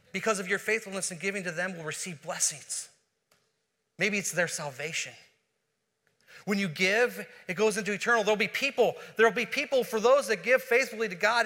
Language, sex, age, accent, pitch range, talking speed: English, male, 30-49, American, 220-260 Hz, 185 wpm